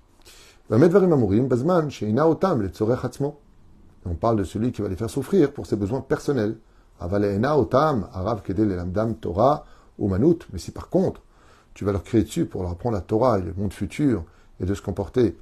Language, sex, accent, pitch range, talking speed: French, male, French, 95-115 Hz, 135 wpm